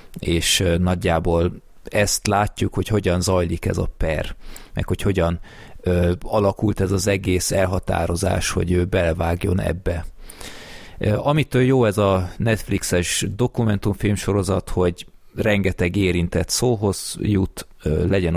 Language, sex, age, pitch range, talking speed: Hungarian, male, 30-49, 85-100 Hz, 110 wpm